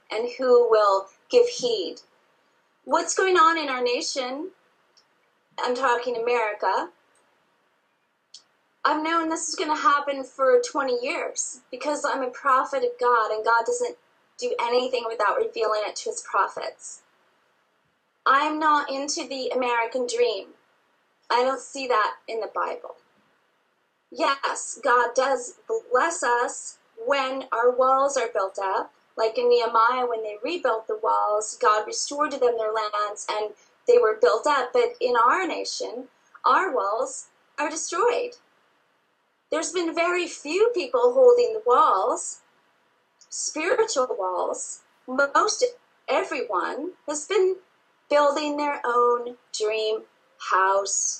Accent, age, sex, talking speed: American, 30-49, female, 130 wpm